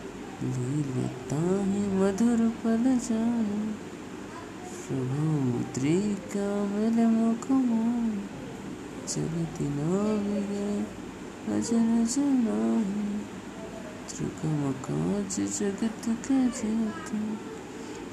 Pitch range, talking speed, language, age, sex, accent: 155-225 Hz, 60 wpm, English, 20-39, male, Indian